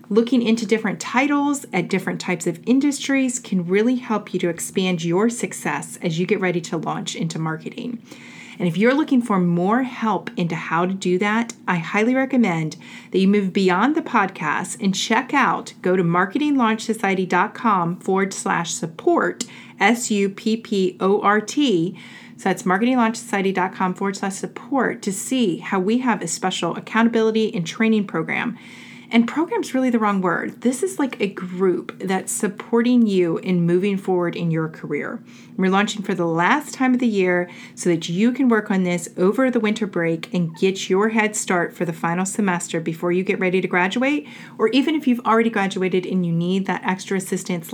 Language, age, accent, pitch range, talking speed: English, 30-49, American, 180-230 Hz, 175 wpm